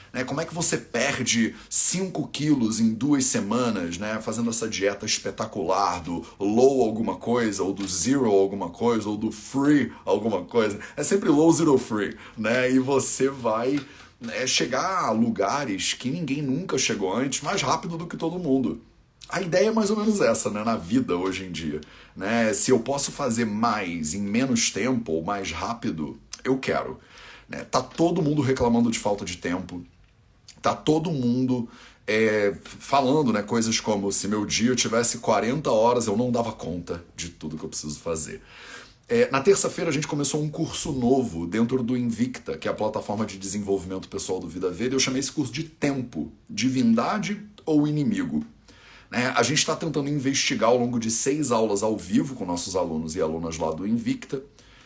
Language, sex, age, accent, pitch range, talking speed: Portuguese, male, 30-49, Brazilian, 105-150 Hz, 180 wpm